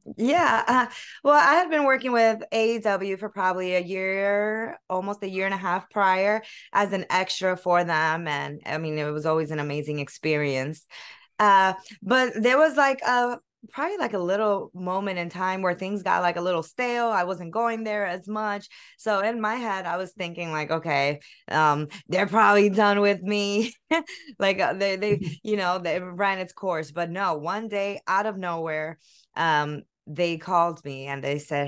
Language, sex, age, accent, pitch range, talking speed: English, female, 20-39, American, 160-215 Hz, 185 wpm